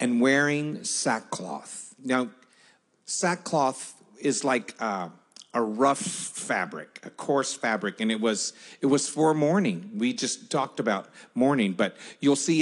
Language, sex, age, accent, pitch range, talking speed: English, male, 50-69, American, 130-165 Hz, 145 wpm